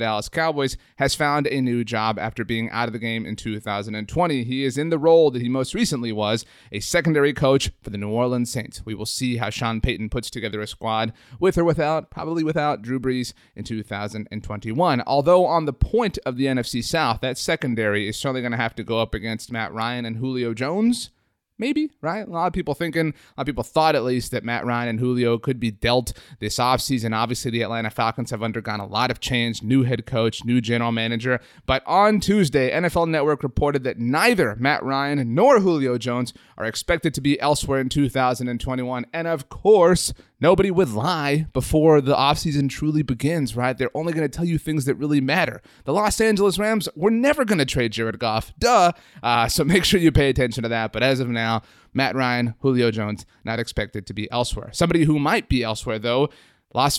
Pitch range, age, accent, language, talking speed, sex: 115-155 Hz, 30-49, American, English, 210 wpm, male